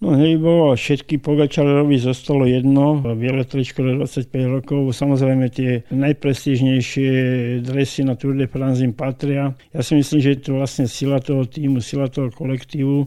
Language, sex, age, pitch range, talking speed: Slovak, male, 50-69, 130-145 Hz, 140 wpm